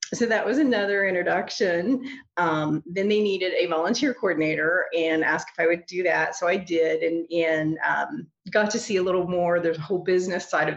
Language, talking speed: English, 200 wpm